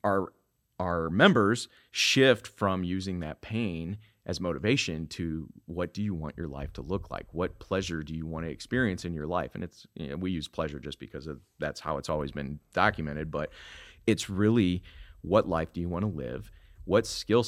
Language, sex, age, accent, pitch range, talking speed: English, male, 30-49, American, 80-100 Hz, 200 wpm